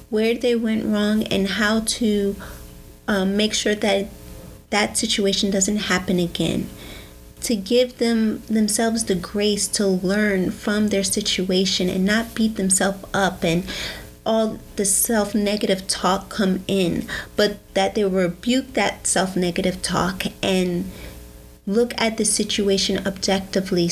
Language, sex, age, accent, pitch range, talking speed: English, female, 30-49, American, 180-210 Hz, 130 wpm